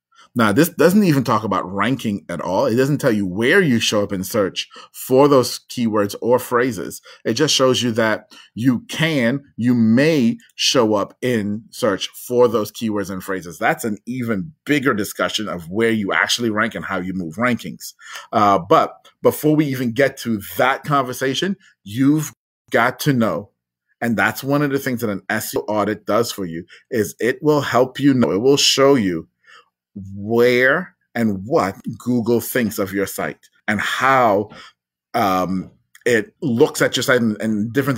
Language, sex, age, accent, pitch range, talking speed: English, male, 30-49, American, 105-135 Hz, 175 wpm